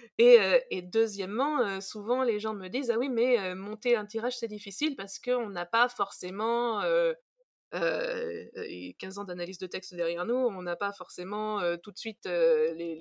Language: French